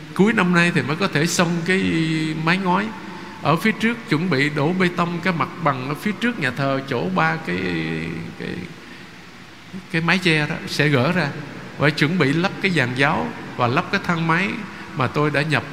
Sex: male